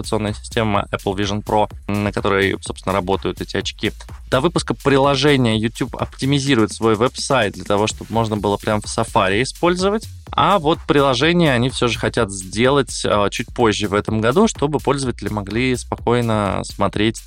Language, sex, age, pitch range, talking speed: Russian, male, 20-39, 100-125 Hz, 155 wpm